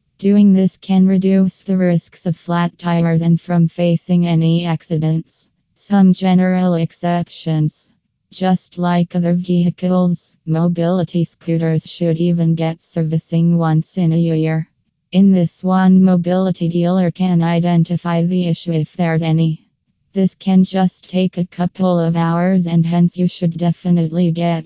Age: 20-39